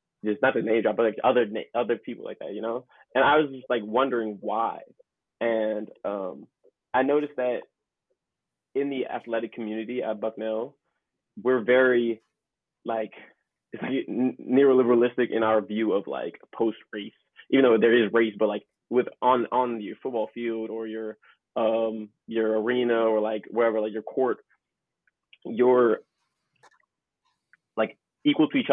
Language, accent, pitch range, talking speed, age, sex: English, American, 110-125 Hz, 155 wpm, 20-39, male